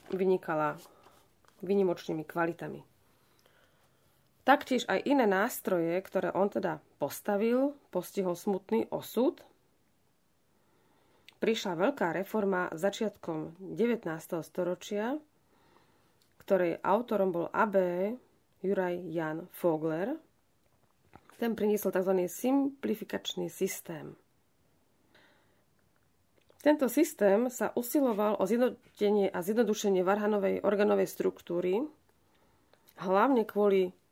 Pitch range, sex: 180-220 Hz, female